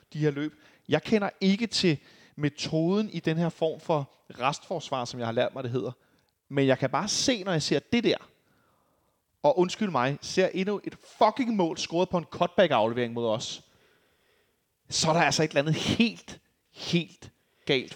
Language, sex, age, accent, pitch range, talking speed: Danish, male, 30-49, native, 145-190 Hz, 185 wpm